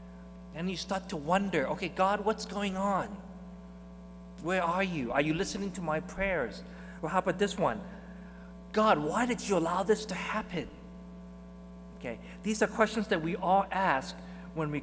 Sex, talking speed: male, 170 wpm